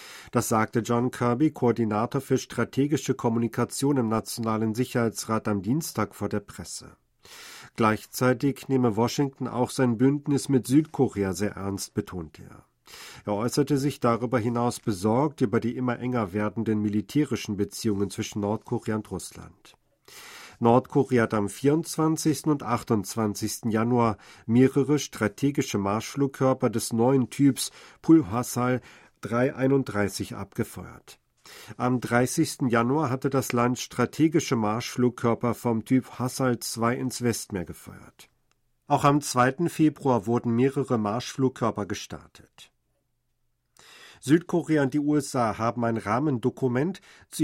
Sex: male